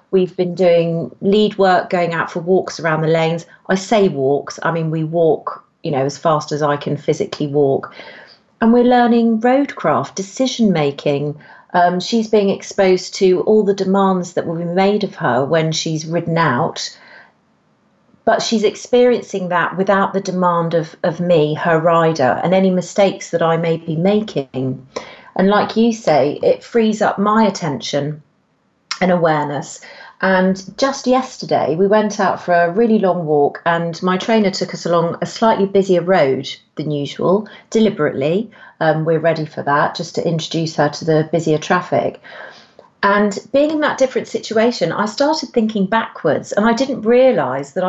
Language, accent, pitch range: English, British, 165-215 Hz